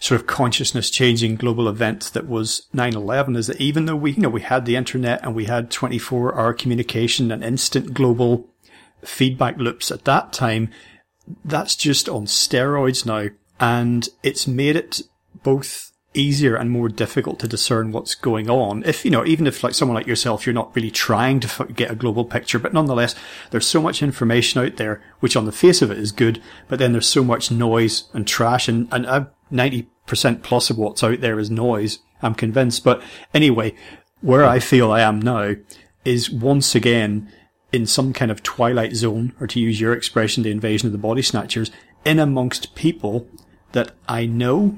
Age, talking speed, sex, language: 40-59, 190 wpm, male, English